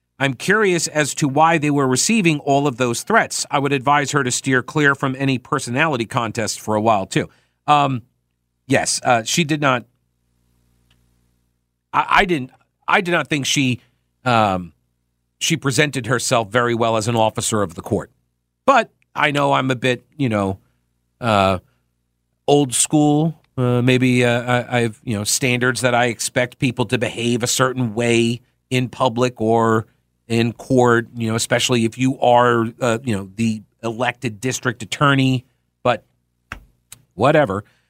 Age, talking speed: 40-59, 160 wpm